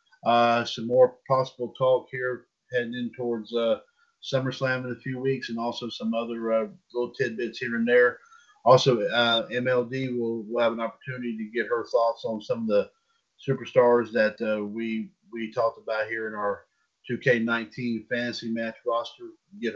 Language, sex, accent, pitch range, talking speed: English, male, American, 115-140 Hz, 170 wpm